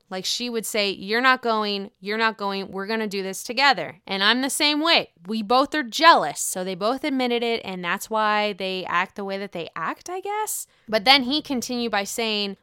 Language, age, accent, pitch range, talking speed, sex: English, 20-39, American, 200-260 Hz, 230 wpm, female